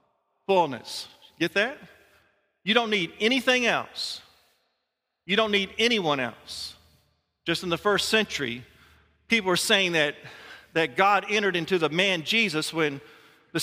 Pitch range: 160-210 Hz